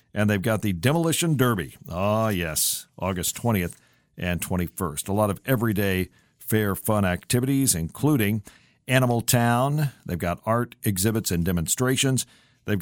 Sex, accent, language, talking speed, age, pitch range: male, American, English, 135 wpm, 50-69, 100-130 Hz